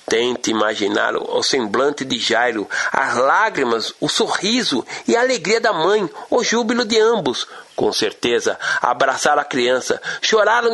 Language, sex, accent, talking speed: Portuguese, male, Brazilian, 140 wpm